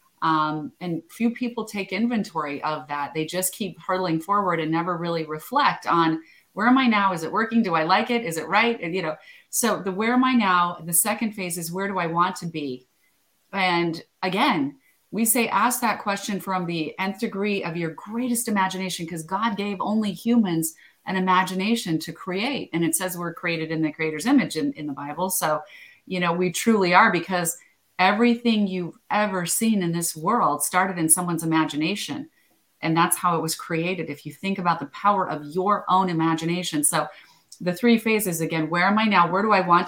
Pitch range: 170-225 Hz